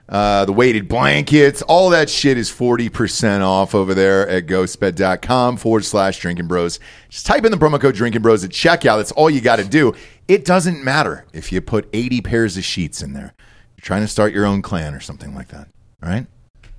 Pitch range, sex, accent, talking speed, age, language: 100-155 Hz, male, American, 205 wpm, 40-59, English